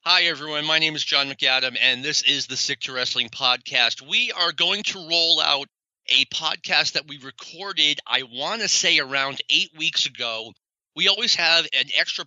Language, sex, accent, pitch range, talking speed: English, male, American, 135-170 Hz, 190 wpm